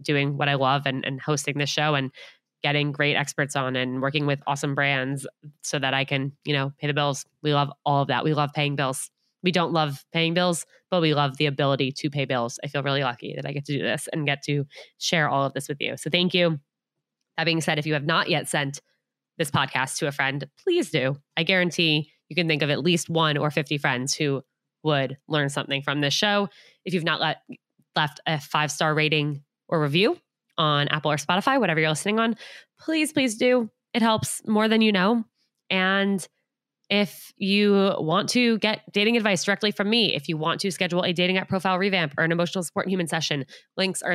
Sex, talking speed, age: female, 220 wpm, 20-39